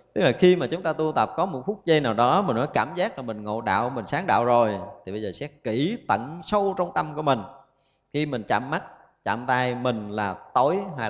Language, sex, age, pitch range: Vietnamese, male, 20-39, 105-155 Hz